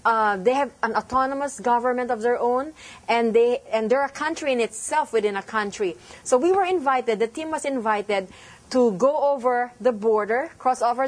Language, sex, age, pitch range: English, female, 40-59, 220-275 Hz